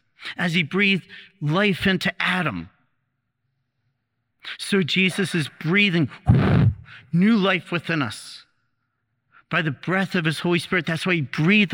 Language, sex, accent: English, male, American